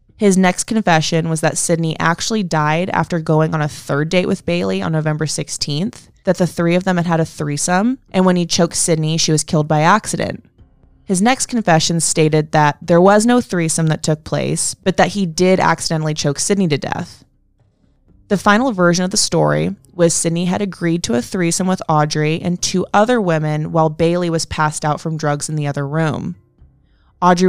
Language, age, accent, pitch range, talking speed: English, 20-39, American, 155-185 Hz, 195 wpm